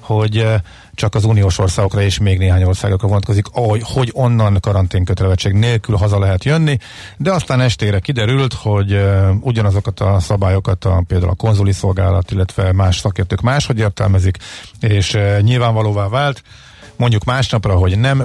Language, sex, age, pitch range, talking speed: Hungarian, male, 50-69, 95-115 Hz, 135 wpm